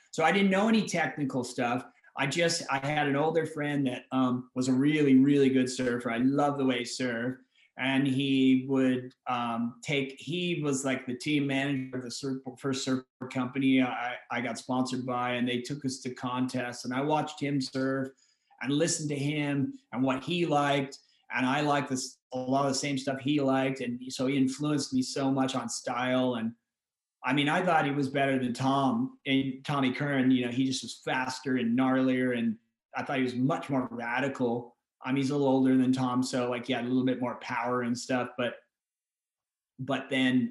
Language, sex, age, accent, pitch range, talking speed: English, male, 30-49, American, 130-145 Hz, 210 wpm